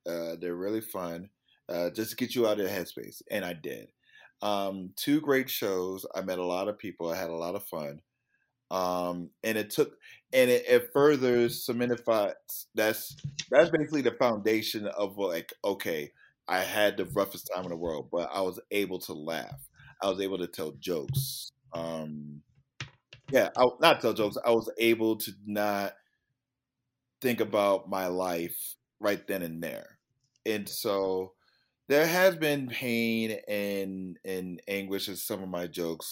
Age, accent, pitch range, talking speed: 30-49, American, 90-125 Hz, 170 wpm